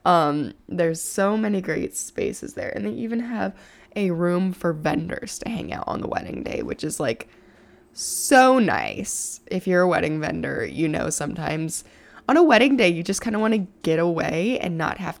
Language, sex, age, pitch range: English, female, 20-39, 165-220 Hz